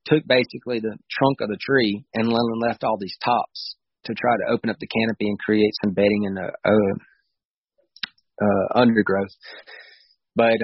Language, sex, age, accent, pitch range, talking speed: English, male, 30-49, American, 105-120 Hz, 165 wpm